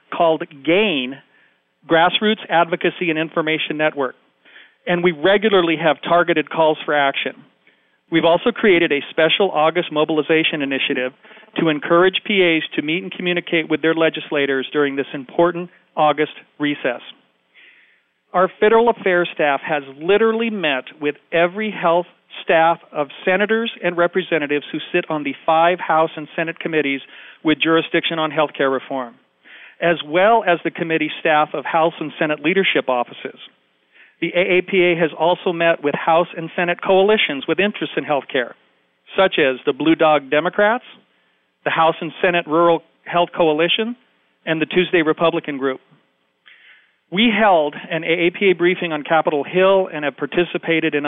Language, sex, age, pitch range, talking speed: English, male, 40-59, 150-180 Hz, 145 wpm